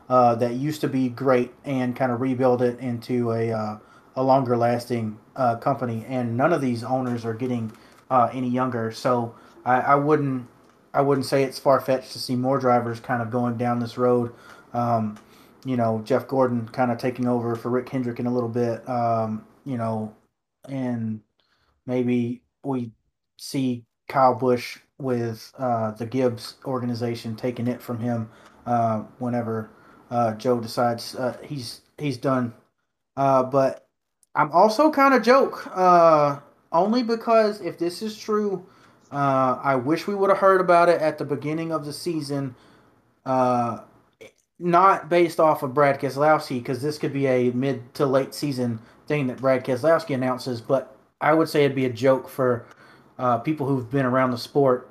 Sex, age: male, 30-49